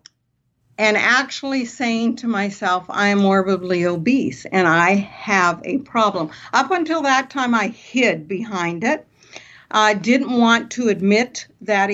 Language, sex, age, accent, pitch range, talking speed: English, female, 50-69, American, 185-230 Hz, 140 wpm